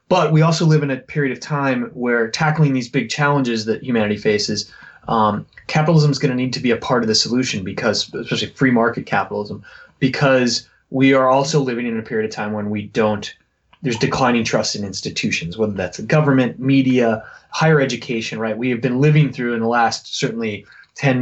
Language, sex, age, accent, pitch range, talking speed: English, male, 20-39, American, 110-140 Hz, 200 wpm